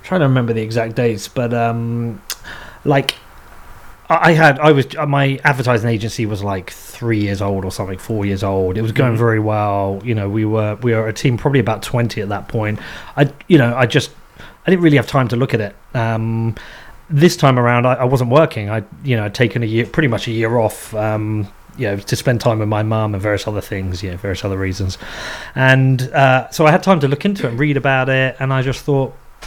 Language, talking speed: English, 230 wpm